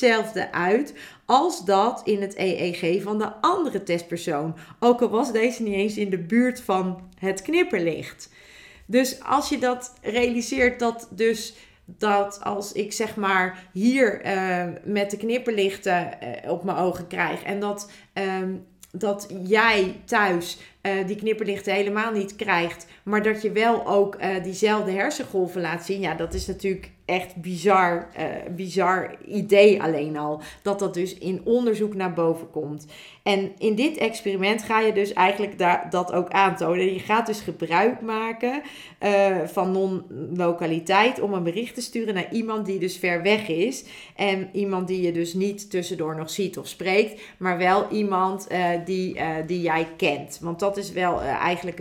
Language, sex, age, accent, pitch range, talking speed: Dutch, female, 40-59, Dutch, 175-210 Hz, 165 wpm